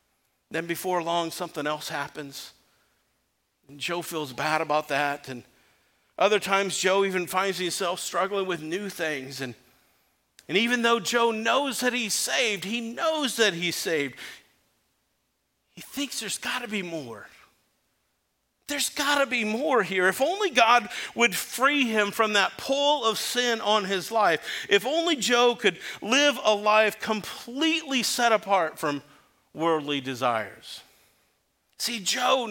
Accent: American